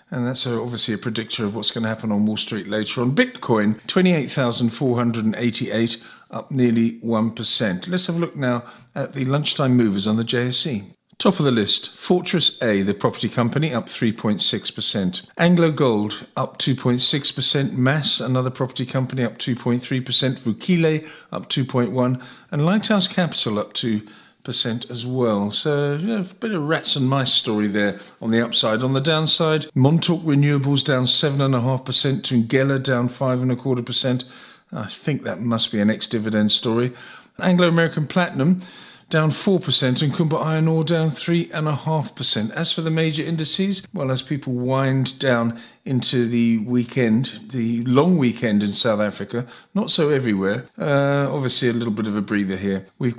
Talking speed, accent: 165 wpm, British